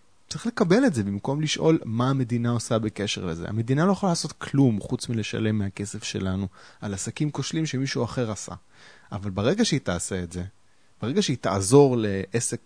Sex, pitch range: male, 100-135 Hz